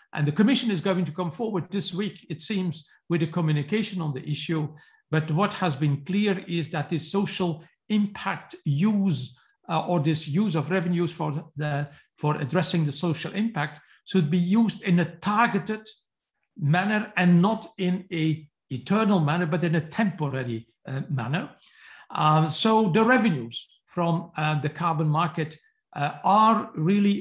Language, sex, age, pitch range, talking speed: English, male, 50-69, 155-195 Hz, 160 wpm